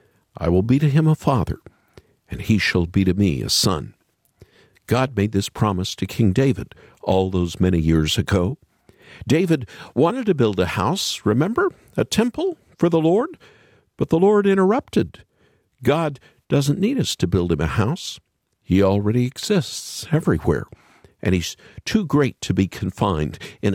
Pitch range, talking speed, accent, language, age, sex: 95-155 Hz, 160 wpm, American, English, 50-69, male